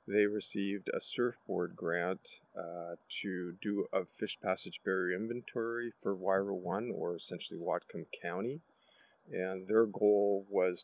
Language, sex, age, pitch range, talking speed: English, male, 40-59, 90-115 Hz, 135 wpm